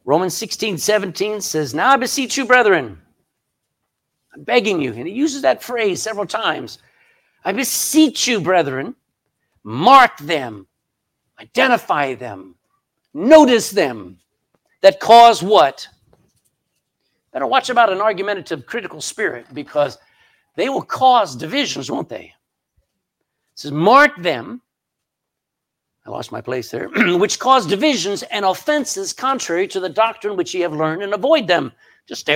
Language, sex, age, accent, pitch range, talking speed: English, male, 50-69, American, 150-240 Hz, 135 wpm